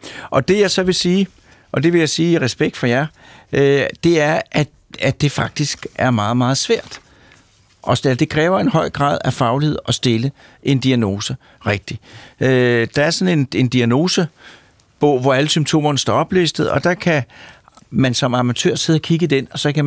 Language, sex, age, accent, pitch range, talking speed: Danish, male, 60-79, native, 130-160 Hz, 185 wpm